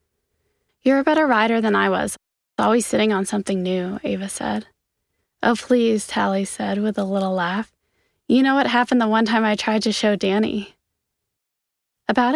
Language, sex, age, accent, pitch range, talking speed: English, female, 20-39, American, 190-245 Hz, 170 wpm